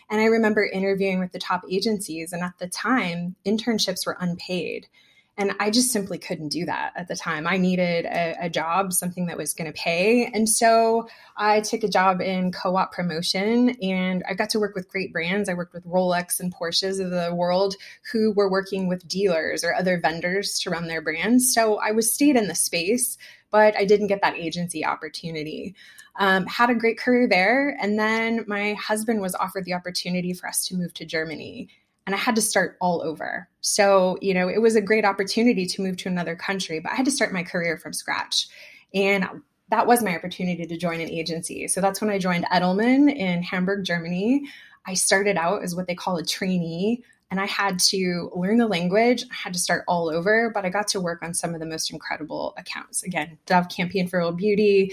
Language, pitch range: English, 175-215 Hz